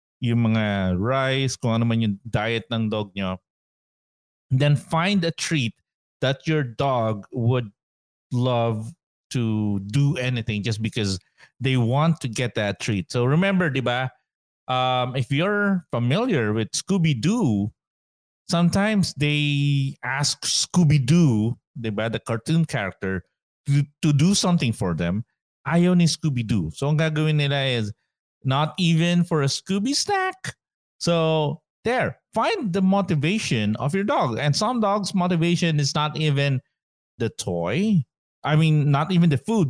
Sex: male